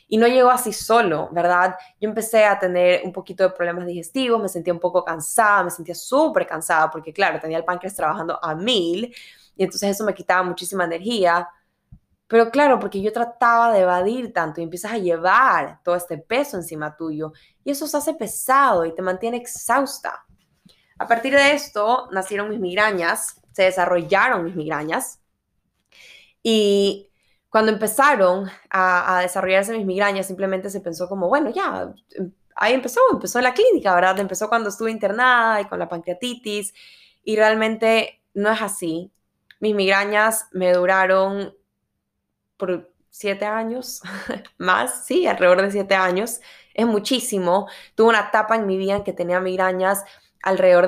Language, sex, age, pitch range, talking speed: English, female, 10-29, 180-220 Hz, 160 wpm